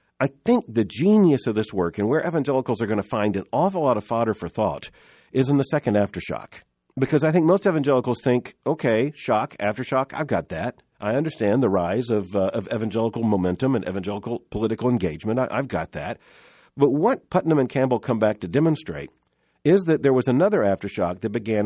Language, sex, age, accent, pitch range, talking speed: English, male, 50-69, American, 110-145 Hz, 195 wpm